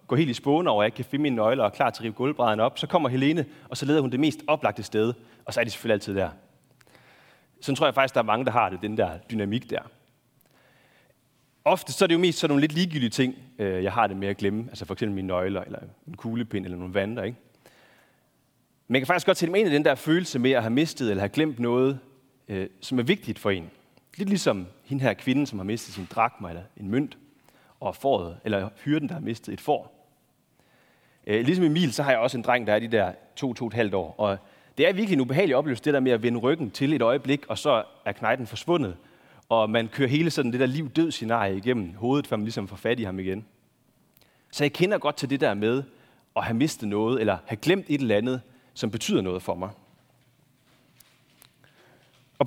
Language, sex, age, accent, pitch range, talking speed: Danish, male, 30-49, native, 110-150 Hz, 235 wpm